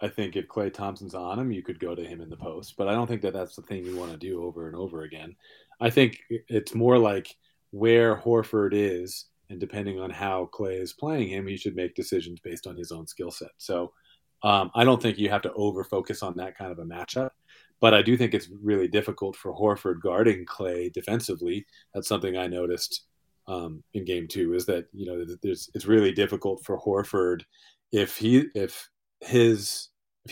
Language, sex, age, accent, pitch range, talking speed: English, male, 30-49, American, 90-110 Hz, 210 wpm